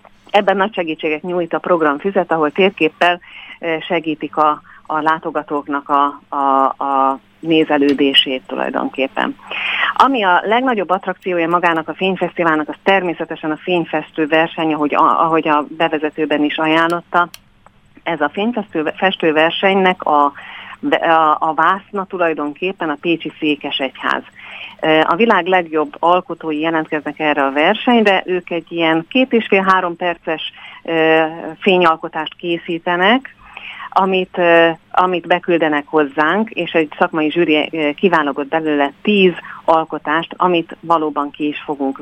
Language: Hungarian